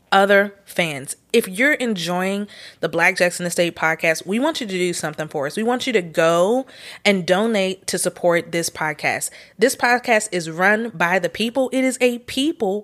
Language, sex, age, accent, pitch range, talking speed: English, female, 30-49, American, 170-220 Hz, 185 wpm